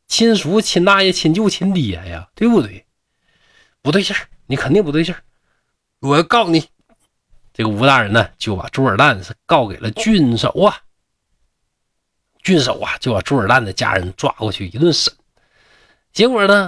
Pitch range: 110-175 Hz